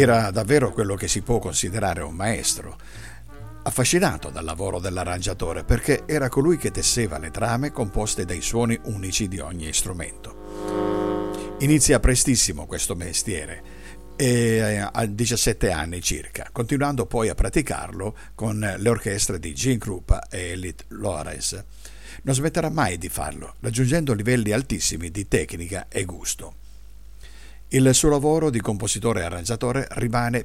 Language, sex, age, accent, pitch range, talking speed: Italian, male, 50-69, native, 90-120 Hz, 135 wpm